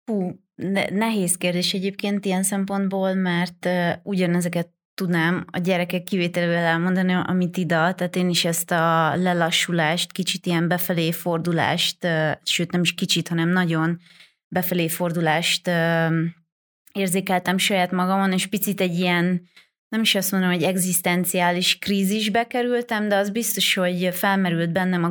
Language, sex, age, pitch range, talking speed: Hungarian, female, 20-39, 170-185 Hz, 140 wpm